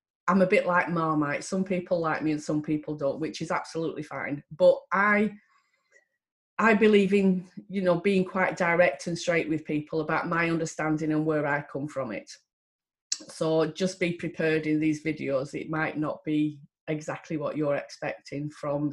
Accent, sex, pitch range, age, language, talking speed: British, female, 160-205 Hz, 30-49, English, 180 wpm